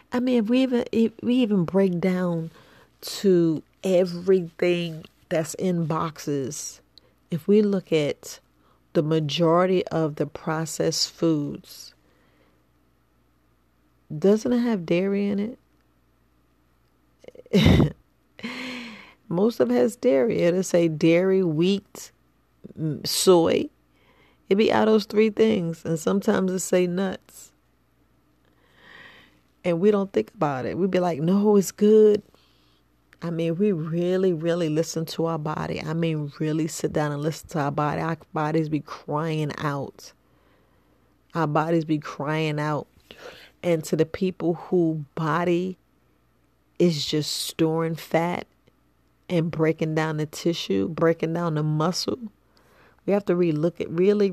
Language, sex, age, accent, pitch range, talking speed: English, female, 40-59, American, 150-185 Hz, 135 wpm